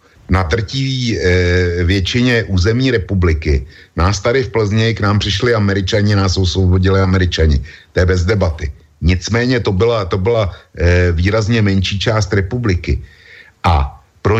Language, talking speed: Slovak, 140 wpm